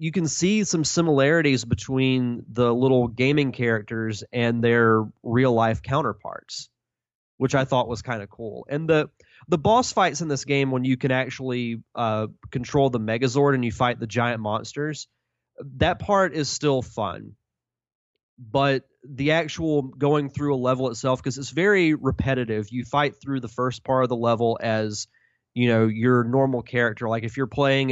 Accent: American